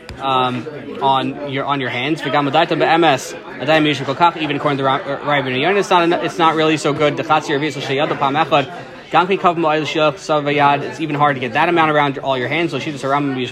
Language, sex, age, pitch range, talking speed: English, male, 20-39, 140-170 Hz, 225 wpm